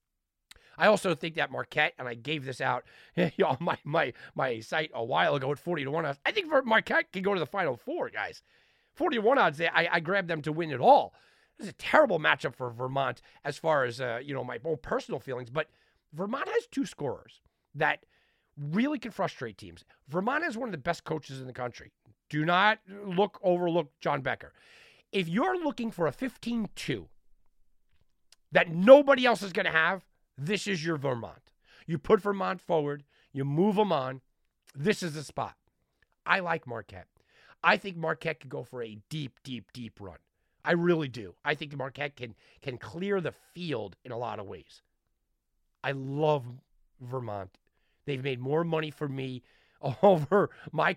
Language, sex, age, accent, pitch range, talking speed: English, male, 40-59, American, 125-185 Hz, 185 wpm